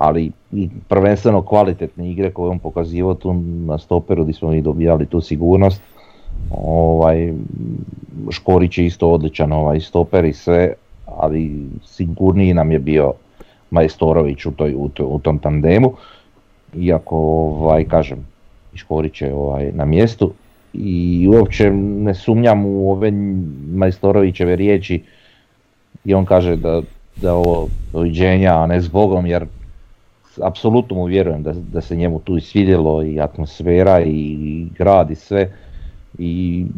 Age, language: 40-59, Croatian